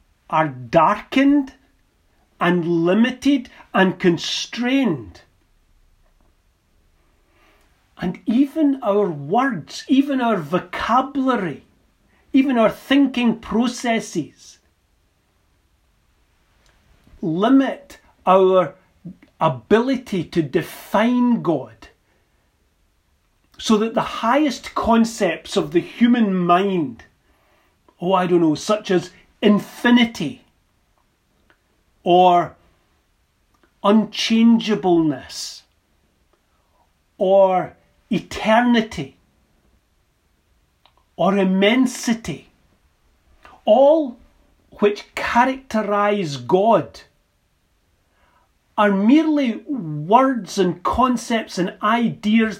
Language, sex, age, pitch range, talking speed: English, male, 40-59, 150-235 Hz, 65 wpm